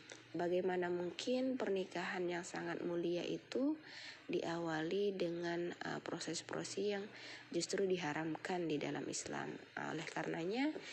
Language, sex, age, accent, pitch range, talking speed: Indonesian, female, 20-39, native, 180-235 Hz, 105 wpm